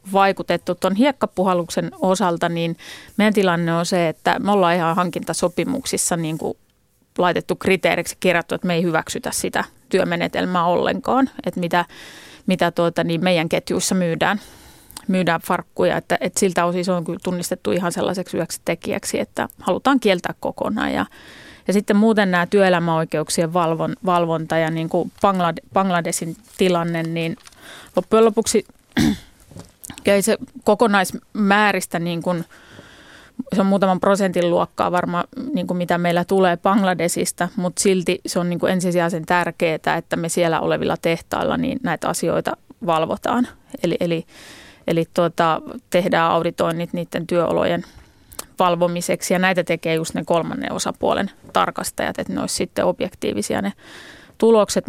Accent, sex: native, female